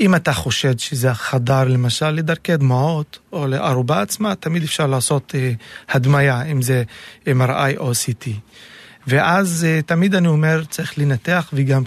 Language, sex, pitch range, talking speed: Hebrew, male, 135-160 Hz, 135 wpm